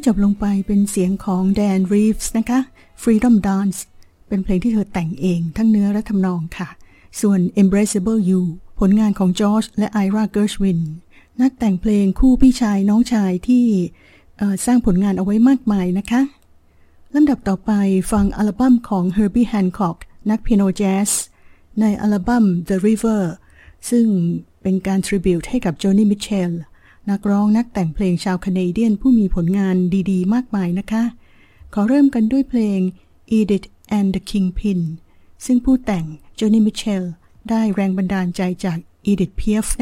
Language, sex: Thai, female